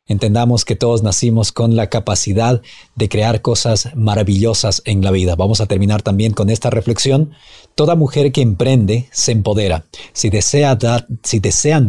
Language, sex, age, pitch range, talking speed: Spanish, male, 40-59, 105-130 Hz, 150 wpm